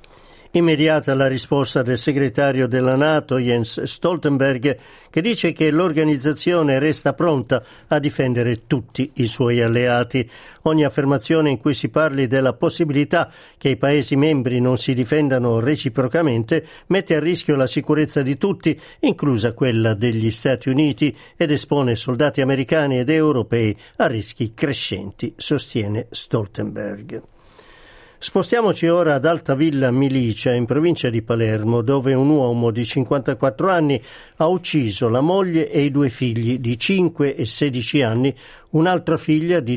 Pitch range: 120-155 Hz